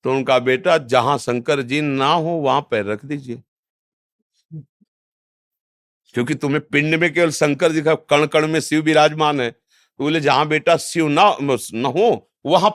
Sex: male